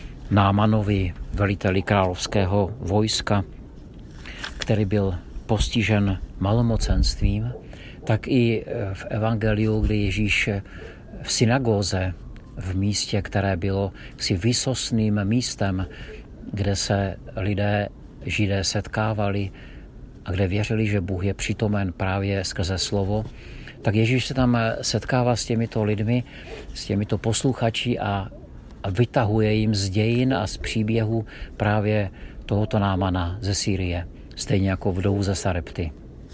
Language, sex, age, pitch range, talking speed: Czech, male, 50-69, 95-110 Hz, 110 wpm